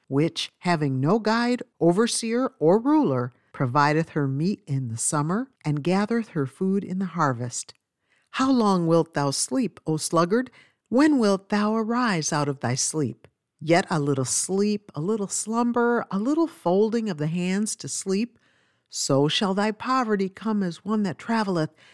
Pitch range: 145-205 Hz